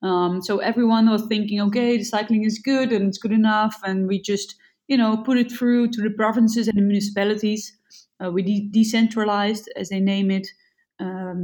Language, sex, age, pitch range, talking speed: English, female, 20-39, 195-230 Hz, 195 wpm